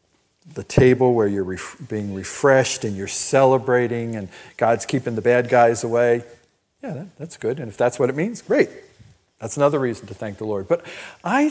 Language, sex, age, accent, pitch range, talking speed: English, male, 50-69, American, 115-175 Hz, 180 wpm